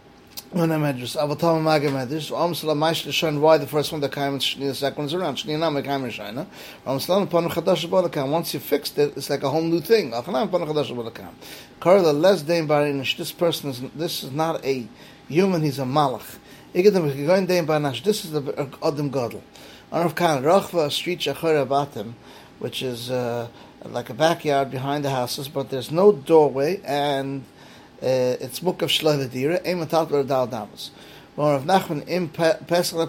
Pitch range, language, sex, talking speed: 135-170 Hz, English, male, 105 wpm